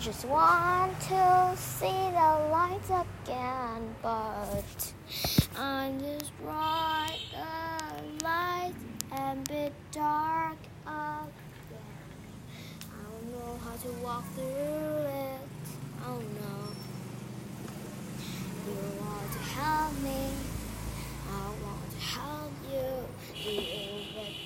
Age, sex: 10-29, female